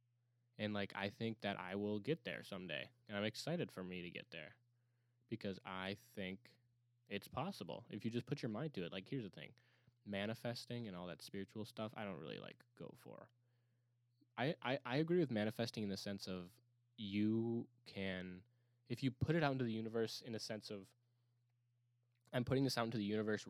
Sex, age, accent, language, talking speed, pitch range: male, 10-29, American, English, 200 wpm, 105-120 Hz